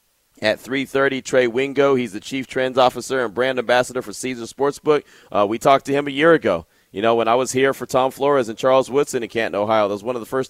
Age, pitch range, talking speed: 30-49, 105-130 Hz, 250 wpm